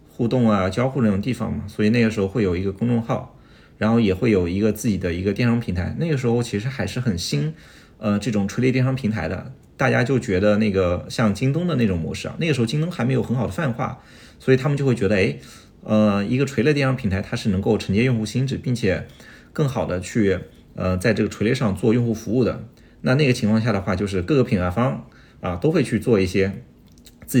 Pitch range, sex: 95-125 Hz, male